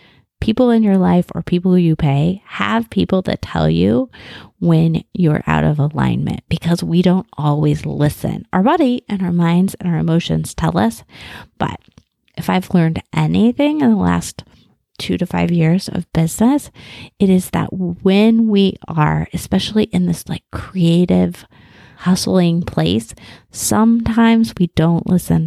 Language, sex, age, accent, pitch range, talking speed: English, female, 30-49, American, 155-200 Hz, 150 wpm